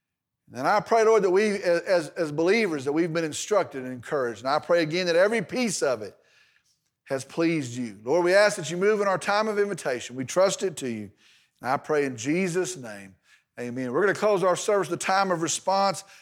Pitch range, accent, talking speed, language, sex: 180-260 Hz, American, 220 wpm, English, male